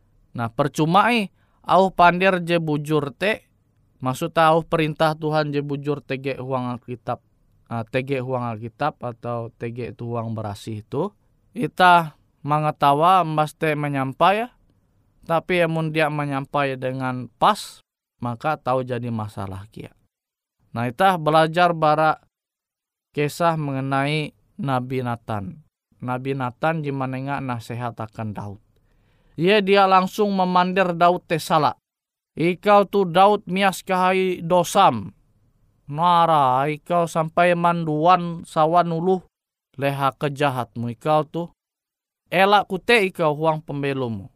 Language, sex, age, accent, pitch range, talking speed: Indonesian, male, 20-39, native, 125-175 Hz, 110 wpm